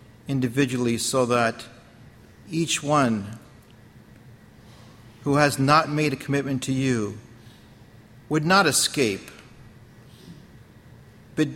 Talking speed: 90 wpm